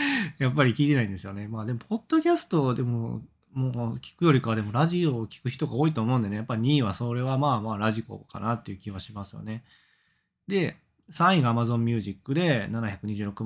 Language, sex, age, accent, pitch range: Japanese, male, 20-39, native, 115-170 Hz